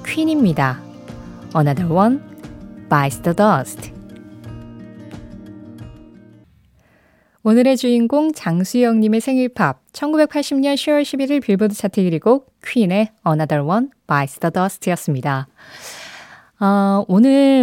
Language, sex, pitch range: Korean, female, 165-230 Hz